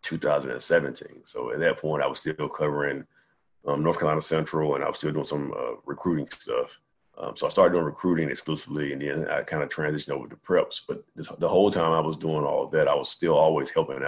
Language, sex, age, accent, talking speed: English, male, 30-49, American, 225 wpm